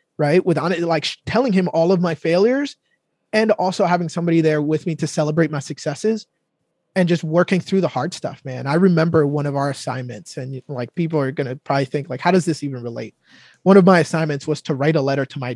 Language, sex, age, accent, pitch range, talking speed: English, male, 20-39, American, 145-180 Hz, 230 wpm